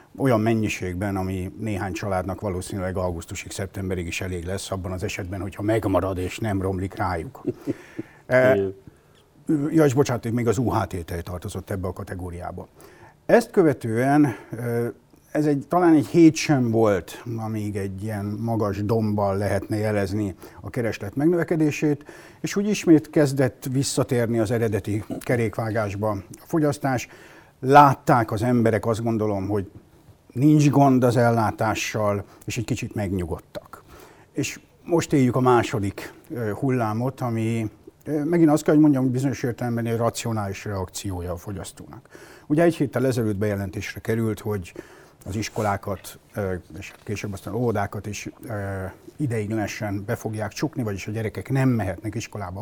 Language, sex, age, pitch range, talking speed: Hungarian, male, 60-79, 100-130 Hz, 135 wpm